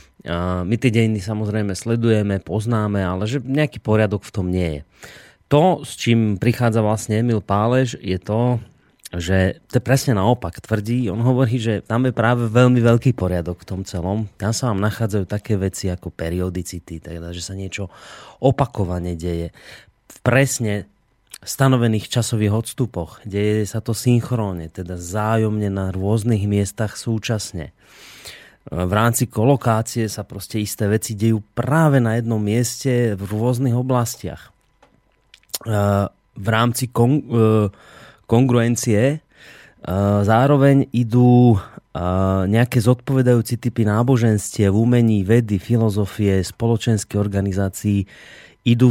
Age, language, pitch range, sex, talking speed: 30-49, Slovak, 100-120 Hz, male, 125 wpm